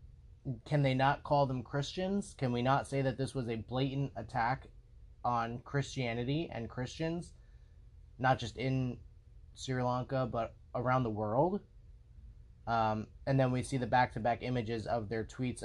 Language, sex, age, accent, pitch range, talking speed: English, male, 30-49, American, 105-135 Hz, 155 wpm